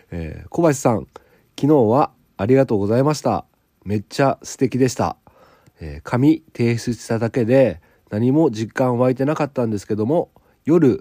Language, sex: Japanese, male